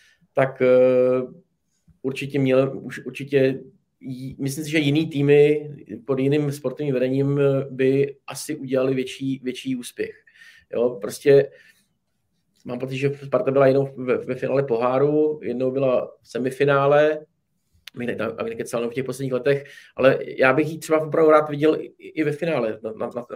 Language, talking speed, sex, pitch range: Czech, 150 wpm, male, 130-145 Hz